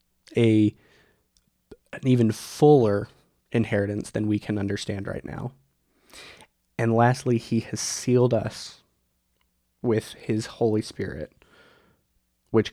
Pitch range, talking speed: 105-125 Hz, 105 wpm